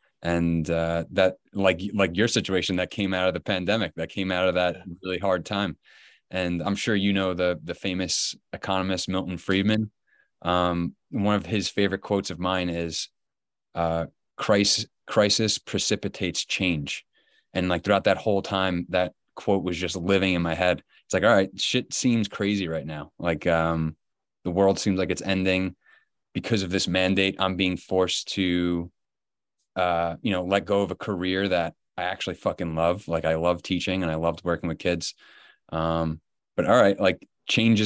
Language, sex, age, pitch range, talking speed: English, male, 20-39, 85-100 Hz, 180 wpm